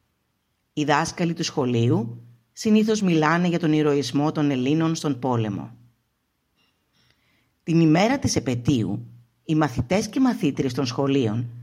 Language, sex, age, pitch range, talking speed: Greek, female, 50-69, 120-175 Hz, 120 wpm